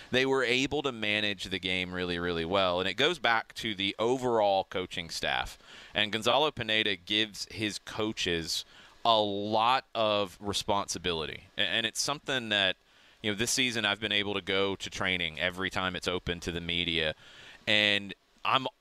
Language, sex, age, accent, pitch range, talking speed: English, male, 30-49, American, 95-125 Hz, 170 wpm